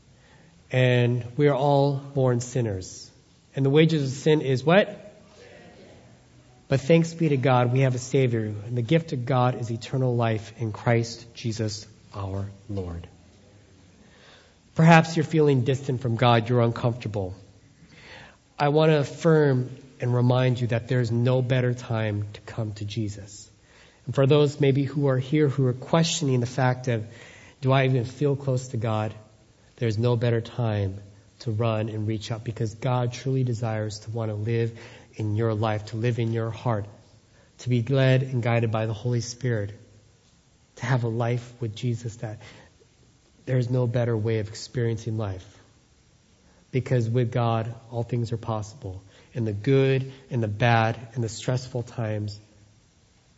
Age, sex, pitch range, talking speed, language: 40-59, male, 110-130 Hz, 165 wpm, English